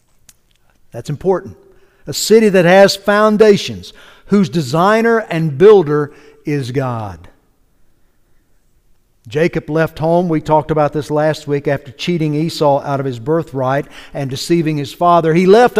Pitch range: 145-205 Hz